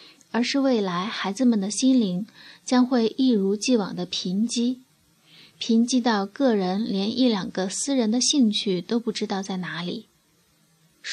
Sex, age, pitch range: female, 20-39, 200-245 Hz